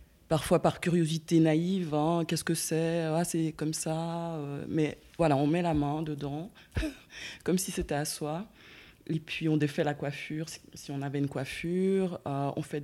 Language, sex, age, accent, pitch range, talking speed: French, female, 20-39, French, 145-170 Hz, 175 wpm